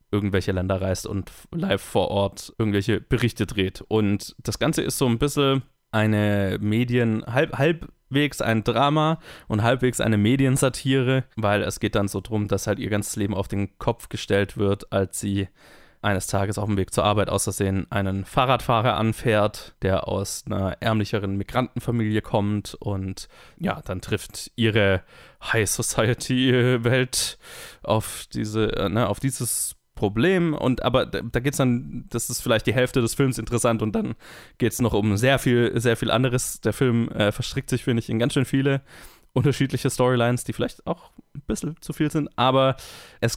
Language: German